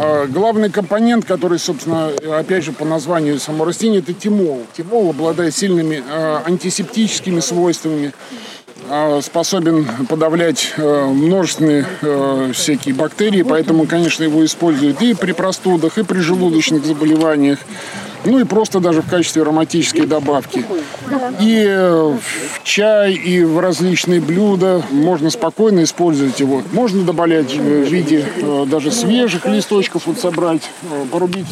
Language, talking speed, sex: Russian, 120 wpm, male